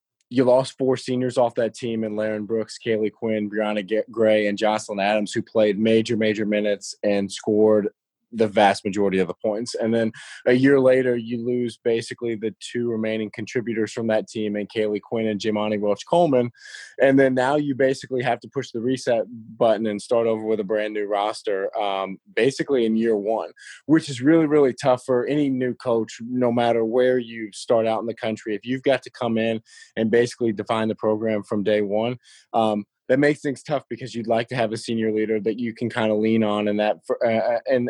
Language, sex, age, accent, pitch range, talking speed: English, male, 20-39, American, 110-125 Hz, 210 wpm